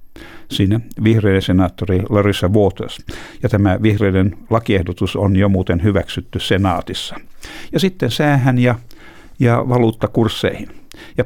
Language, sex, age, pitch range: Finnish, male, 60-79, 90-110 Hz